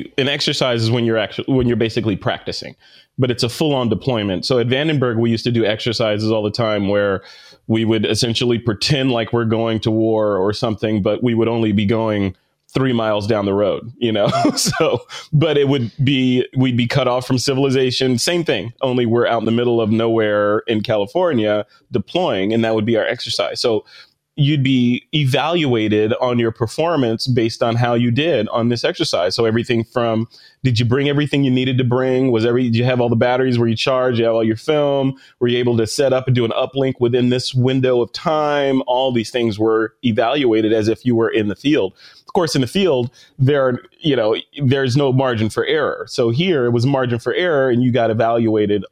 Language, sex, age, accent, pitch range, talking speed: English, male, 30-49, American, 110-130 Hz, 215 wpm